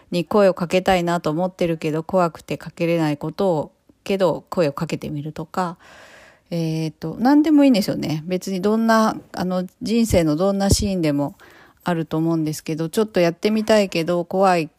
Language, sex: Japanese, female